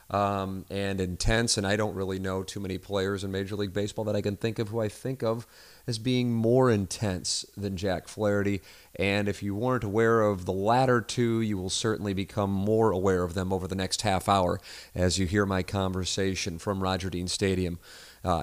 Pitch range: 100-135 Hz